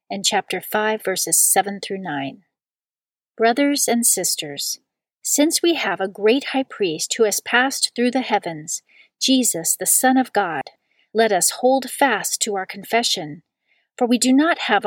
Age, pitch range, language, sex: 40-59, 195-250 Hz, English, female